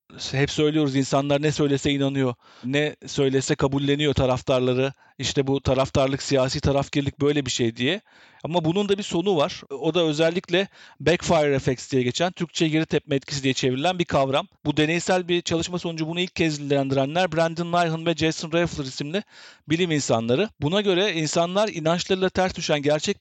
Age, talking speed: 50-69, 165 wpm